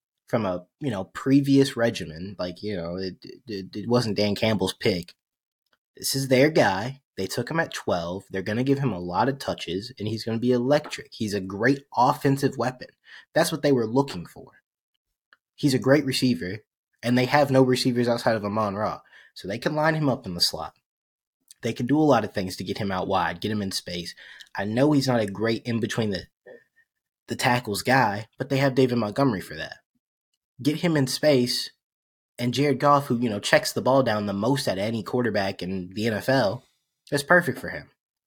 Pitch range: 105-140 Hz